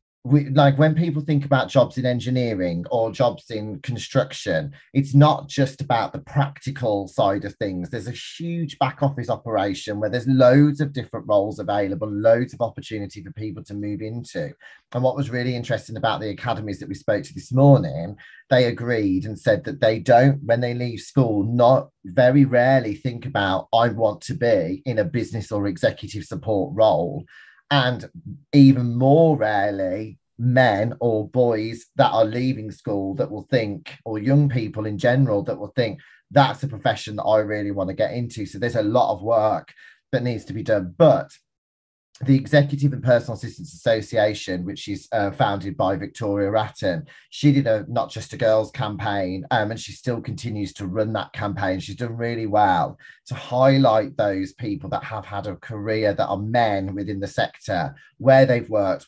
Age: 30-49